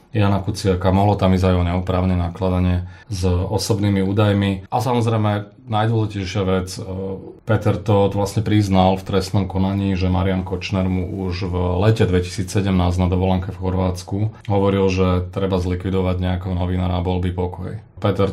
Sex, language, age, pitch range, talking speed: male, Slovak, 30-49, 90-105 Hz, 145 wpm